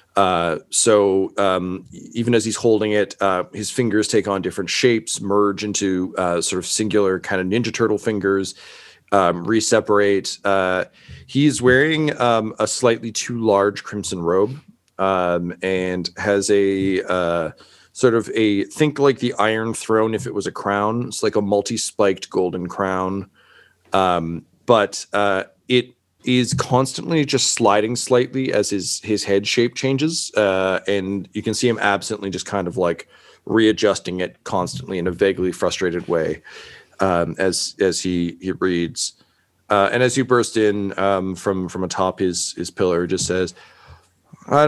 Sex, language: male, English